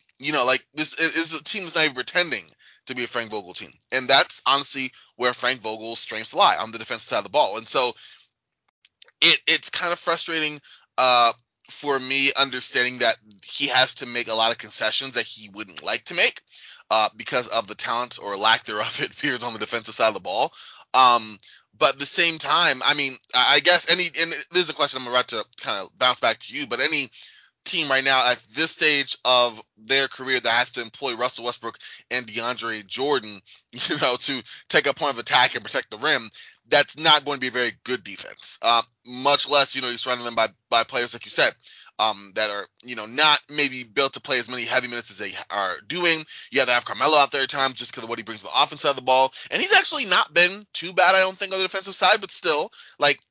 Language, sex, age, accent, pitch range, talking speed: English, male, 20-39, American, 120-155 Hz, 240 wpm